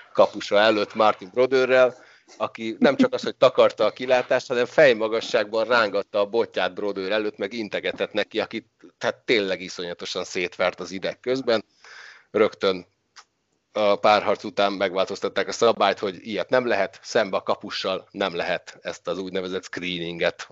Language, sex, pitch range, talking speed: Hungarian, male, 95-120 Hz, 145 wpm